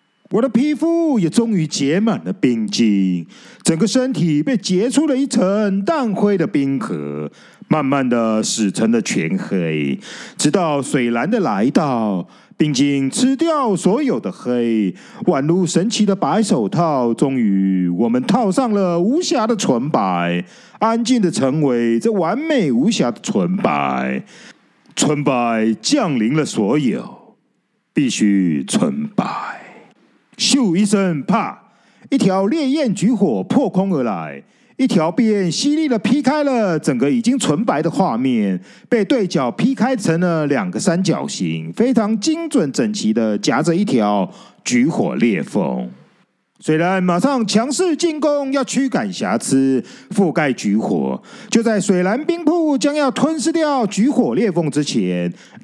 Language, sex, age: Chinese, male, 40-59